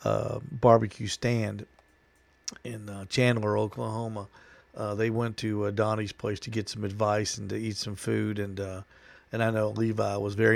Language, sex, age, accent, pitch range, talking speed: English, male, 50-69, American, 100-125 Hz, 175 wpm